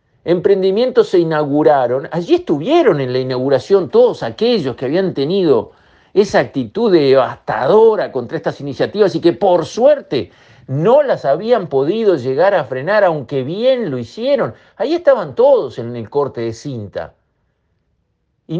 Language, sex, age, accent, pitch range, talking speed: Spanish, male, 50-69, Argentinian, 135-205 Hz, 140 wpm